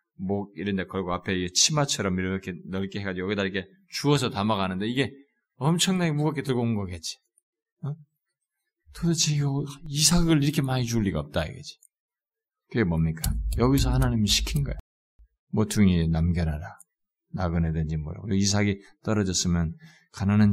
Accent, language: native, Korean